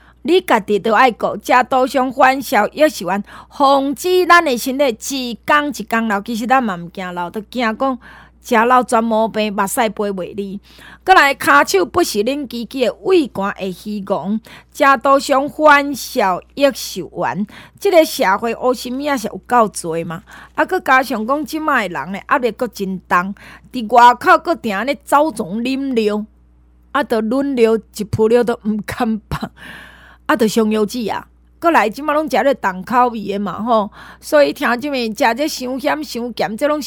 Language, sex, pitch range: Chinese, female, 210-285 Hz